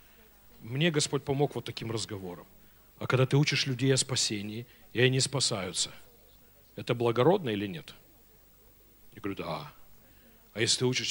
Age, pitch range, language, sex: 40-59, 110-135 Hz, Russian, male